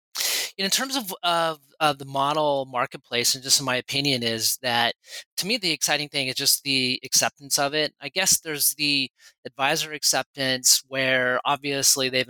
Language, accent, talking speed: English, American, 165 wpm